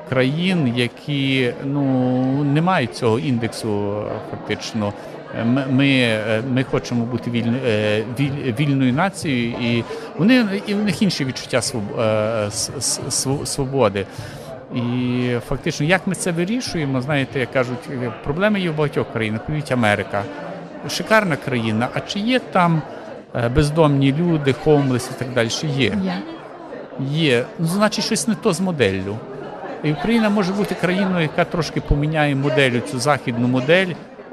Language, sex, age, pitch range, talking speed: Ukrainian, male, 50-69, 120-155 Hz, 135 wpm